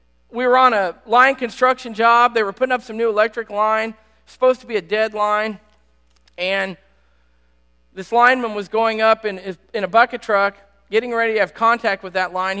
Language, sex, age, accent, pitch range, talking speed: English, male, 40-59, American, 170-235 Hz, 190 wpm